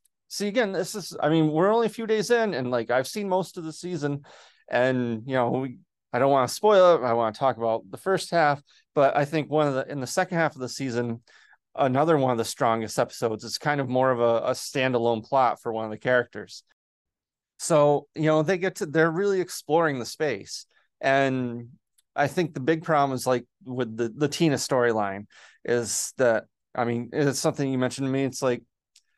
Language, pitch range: English, 120-155 Hz